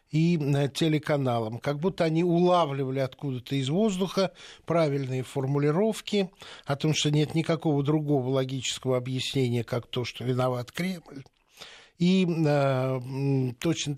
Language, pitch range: Russian, 135-170 Hz